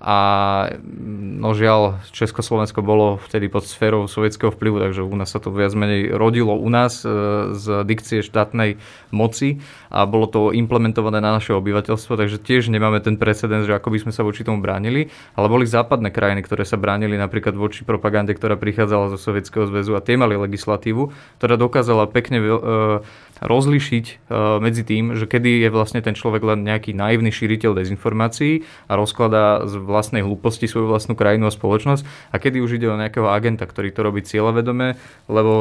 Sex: male